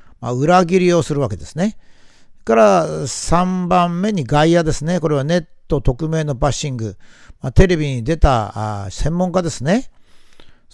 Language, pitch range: Japanese, 130-185 Hz